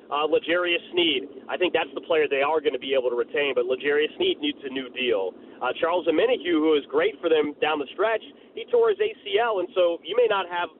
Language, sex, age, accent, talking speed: English, male, 30-49, American, 245 wpm